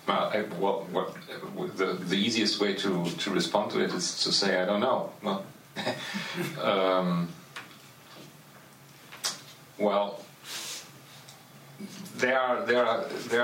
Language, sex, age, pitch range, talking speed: English, male, 40-59, 100-120 Hz, 90 wpm